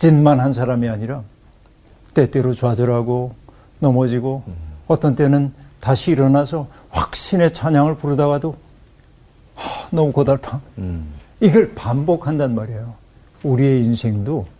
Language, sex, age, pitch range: Korean, male, 60-79, 115-145 Hz